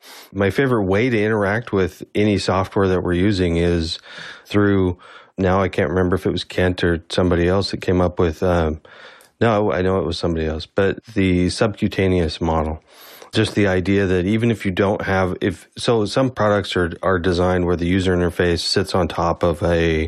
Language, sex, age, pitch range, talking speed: English, male, 30-49, 90-100 Hz, 195 wpm